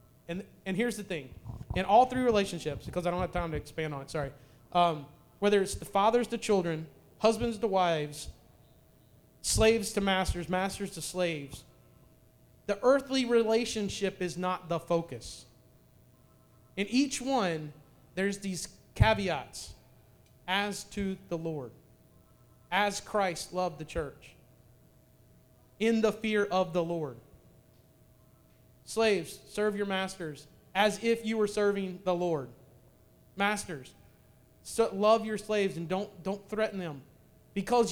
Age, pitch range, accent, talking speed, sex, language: 30-49, 135-215 Hz, American, 135 wpm, male, English